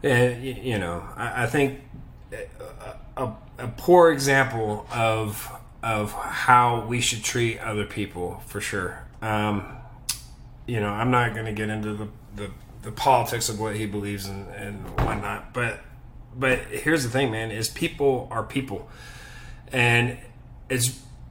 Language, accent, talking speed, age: English, American, 150 wpm, 30-49